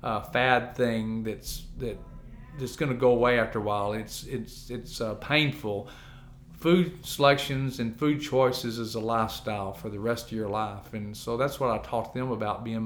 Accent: American